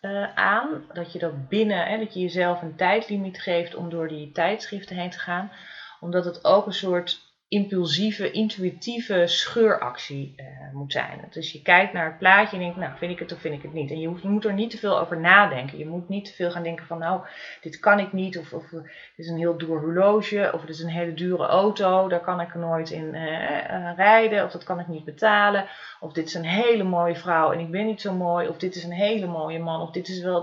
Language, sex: Dutch, female